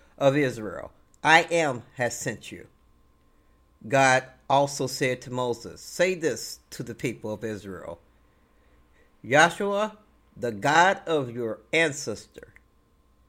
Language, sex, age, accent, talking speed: English, male, 50-69, American, 115 wpm